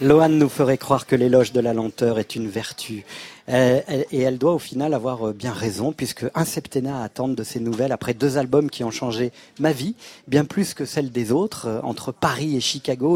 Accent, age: French, 40-59